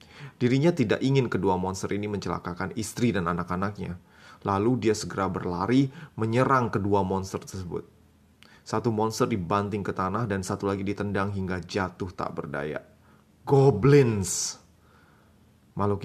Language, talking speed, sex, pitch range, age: Indonesian, 125 wpm, male, 90-105 Hz, 20-39